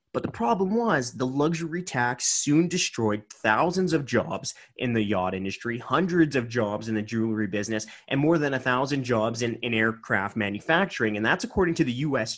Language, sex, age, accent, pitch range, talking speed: English, male, 30-49, American, 115-160 Hz, 185 wpm